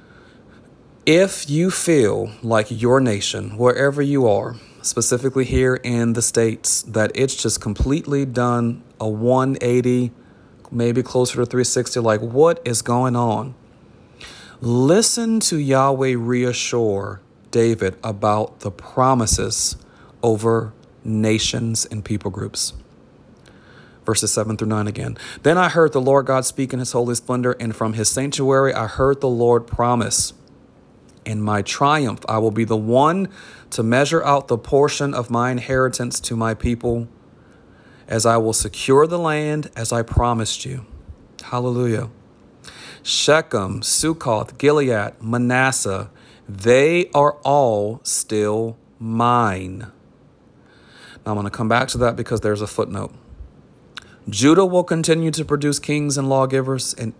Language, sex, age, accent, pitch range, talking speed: English, male, 40-59, American, 110-135 Hz, 135 wpm